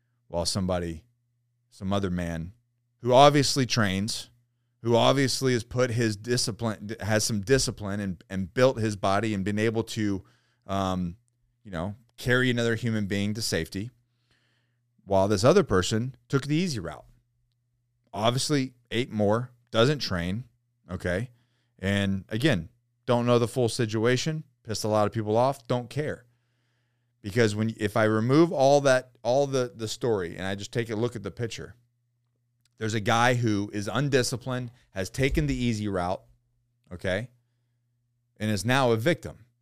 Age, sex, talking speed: 30-49, male, 155 wpm